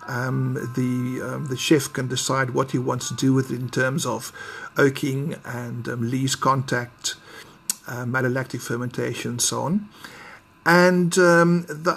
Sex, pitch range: male, 130-175 Hz